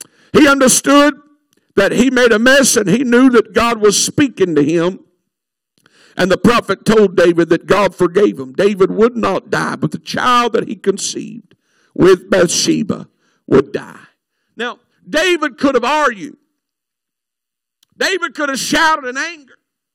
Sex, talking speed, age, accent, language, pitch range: male, 150 wpm, 50-69, American, English, 230-300 Hz